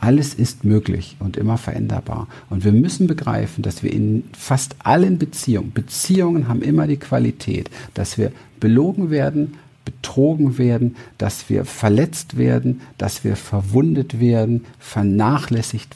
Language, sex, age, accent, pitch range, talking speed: German, male, 50-69, German, 100-125 Hz, 135 wpm